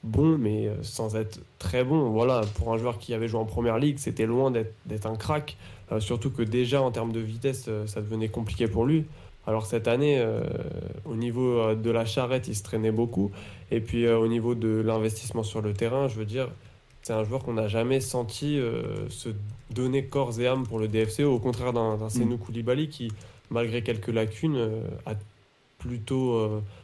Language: French